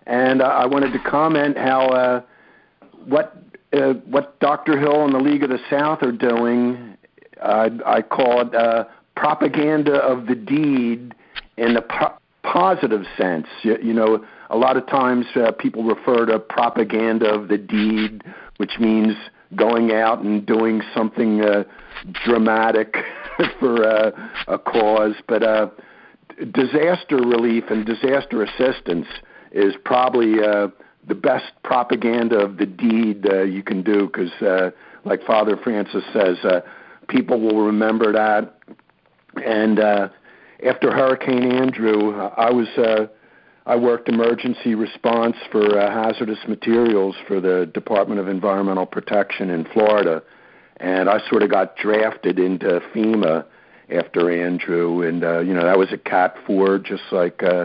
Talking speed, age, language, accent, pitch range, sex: 145 wpm, 60-79, English, American, 105-125 Hz, male